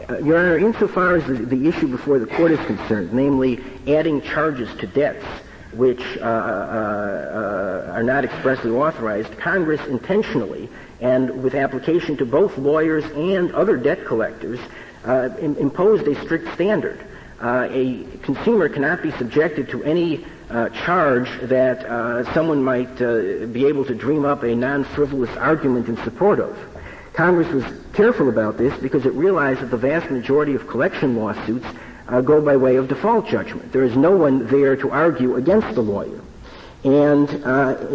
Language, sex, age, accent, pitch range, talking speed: English, male, 60-79, American, 125-150 Hz, 165 wpm